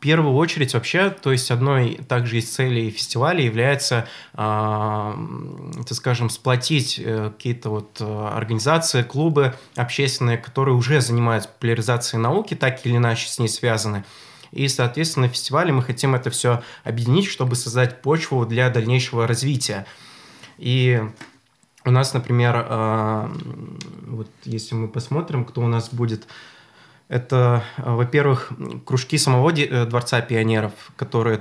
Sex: male